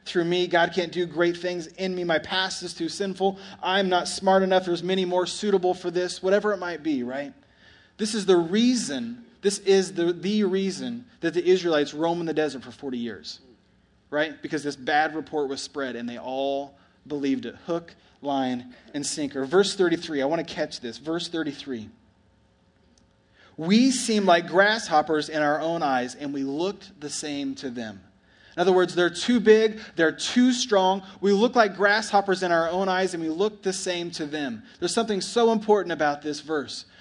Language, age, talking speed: English, 30-49, 195 wpm